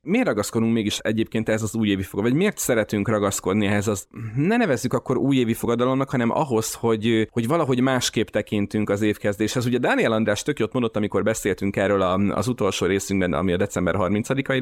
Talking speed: 180 wpm